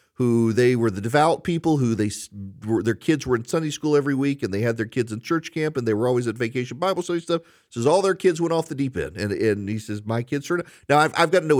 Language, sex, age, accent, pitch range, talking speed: English, male, 40-59, American, 110-150 Hz, 300 wpm